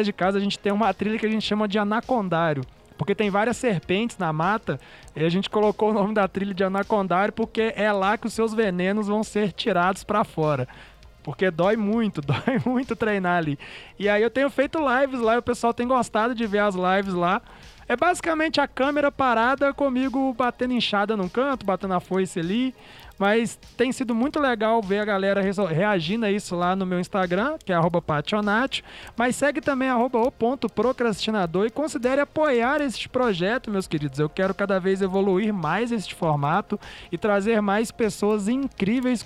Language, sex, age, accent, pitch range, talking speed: Portuguese, male, 20-39, Brazilian, 185-235 Hz, 190 wpm